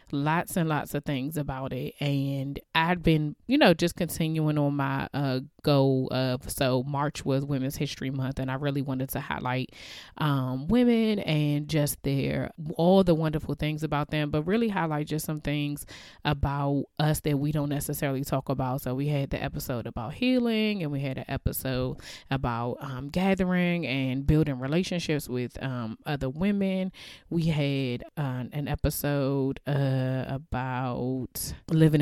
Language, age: English, 20-39